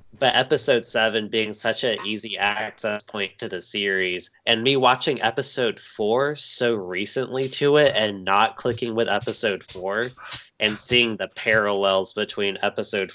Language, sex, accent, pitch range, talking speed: English, male, American, 100-115 Hz, 150 wpm